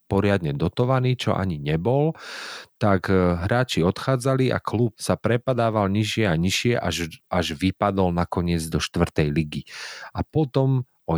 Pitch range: 85-105 Hz